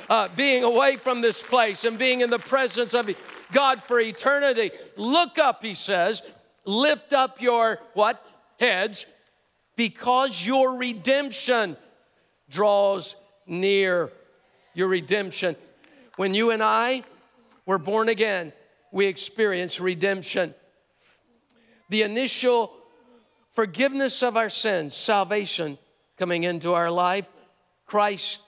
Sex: male